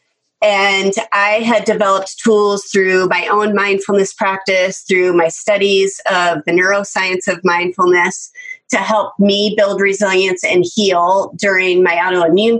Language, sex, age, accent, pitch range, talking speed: English, female, 30-49, American, 185-220 Hz, 135 wpm